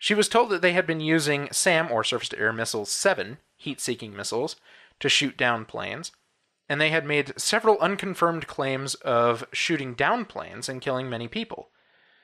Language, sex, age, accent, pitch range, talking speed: English, male, 20-39, American, 120-170 Hz, 165 wpm